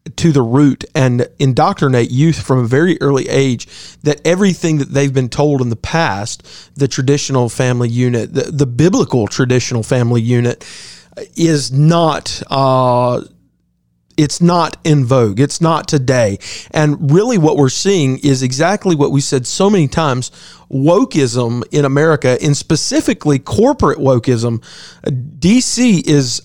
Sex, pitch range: male, 135-175 Hz